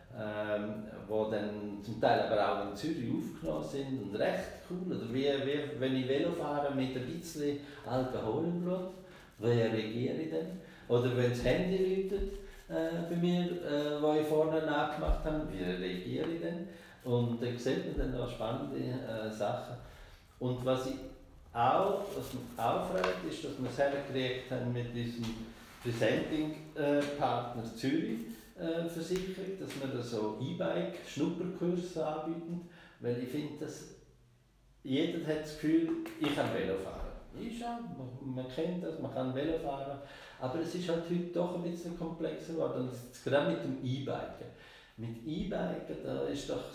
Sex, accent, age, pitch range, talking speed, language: male, Austrian, 60-79, 120-165 Hz, 155 wpm, German